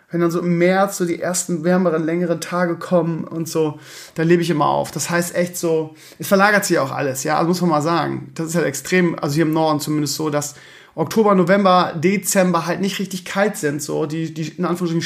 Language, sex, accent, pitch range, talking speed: German, male, German, 150-180 Hz, 230 wpm